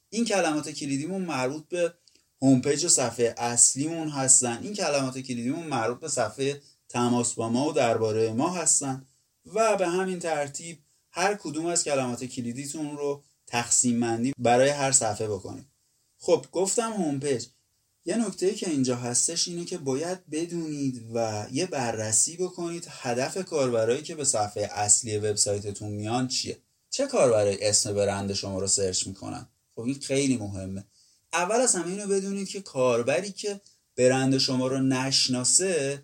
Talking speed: 150 wpm